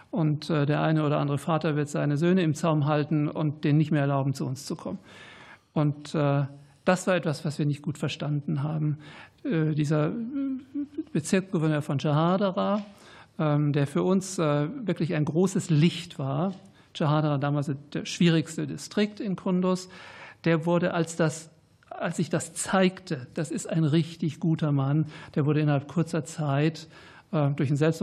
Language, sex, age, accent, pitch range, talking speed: German, male, 60-79, German, 150-175 Hz, 150 wpm